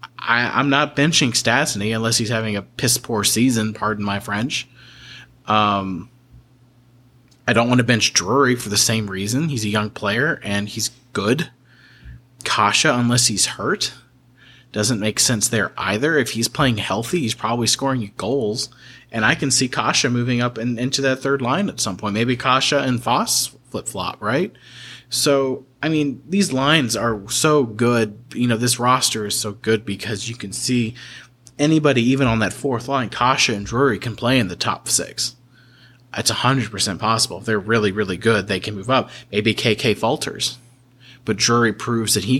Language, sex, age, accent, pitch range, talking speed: English, male, 30-49, American, 110-130 Hz, 175 wpm